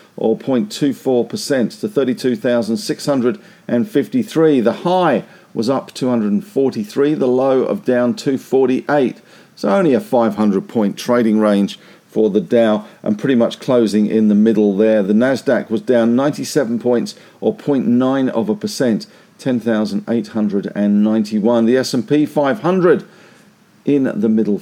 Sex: male